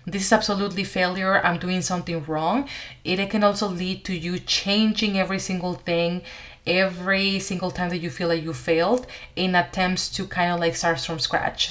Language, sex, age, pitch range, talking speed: English, female, 30-49, 170-200 Hz, 185 wpm